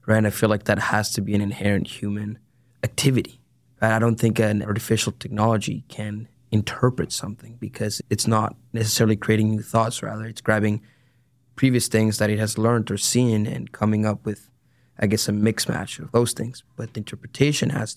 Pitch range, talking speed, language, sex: 110-125 Hz, 185 wpm, English, male